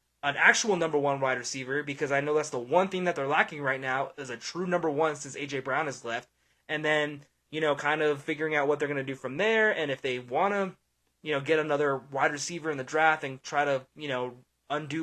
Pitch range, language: 145-185 Hz, English